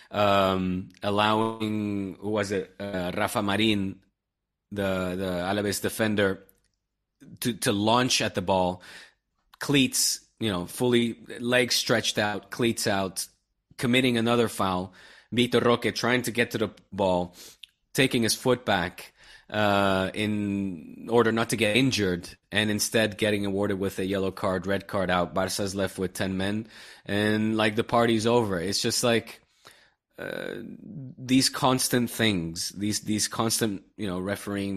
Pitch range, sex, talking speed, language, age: 95-115 Hz, male, 145 wpm, English, 30-49